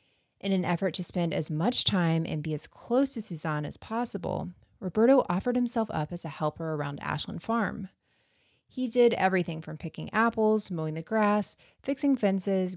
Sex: female